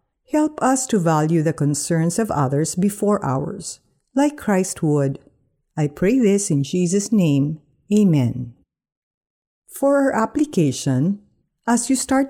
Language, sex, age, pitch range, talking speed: Filipino, female, 50-69, 145-225 Hz, 125 wpm